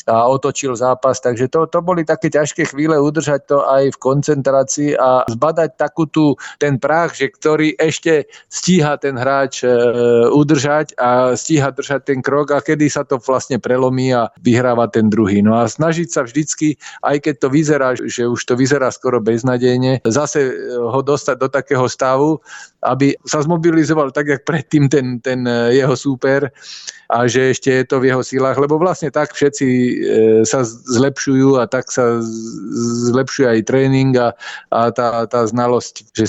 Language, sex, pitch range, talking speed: Slovak, male, 120-140 Hz, 170 wpm